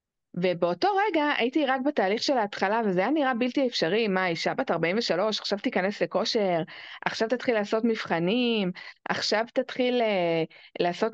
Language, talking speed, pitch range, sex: Hebrew, 145 wpm, 185-255 Hz, female